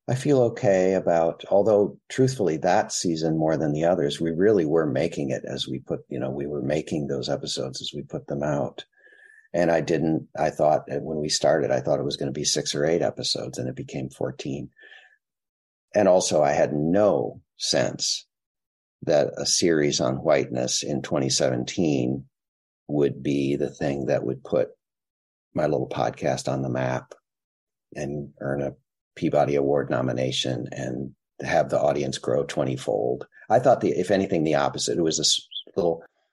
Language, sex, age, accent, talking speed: English, male, 50-69, American, 175 wpm